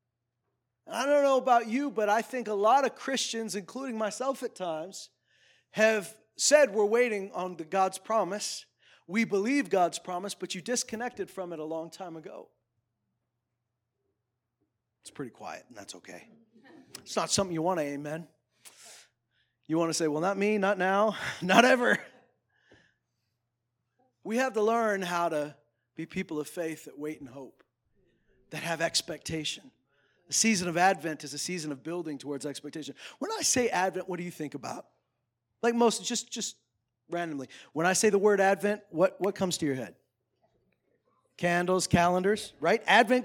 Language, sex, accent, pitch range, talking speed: English, male, American, 150-225 Hz, 165 wpm